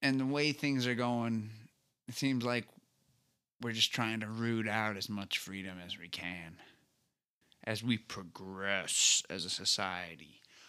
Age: 20-39